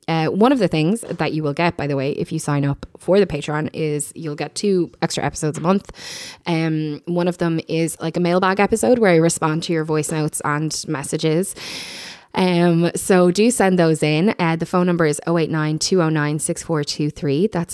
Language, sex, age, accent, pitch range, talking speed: English, female, 10-29, Irish, 150-175 Hz, 195 wpm